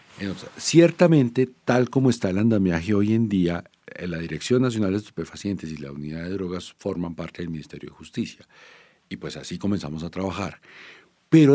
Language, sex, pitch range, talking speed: English, male, 90-135 Hz, 165 wpm